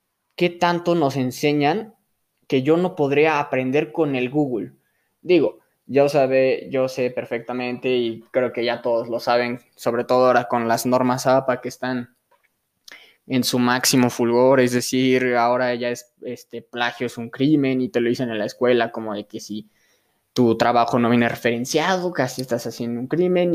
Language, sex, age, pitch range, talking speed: Spanish, male, 20-39, 120-140 Hz, 175 wpm